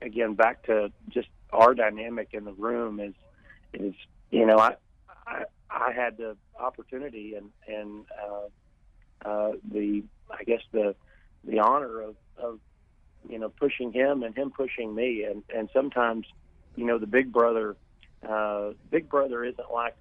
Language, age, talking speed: English, 40-59, 155 wpm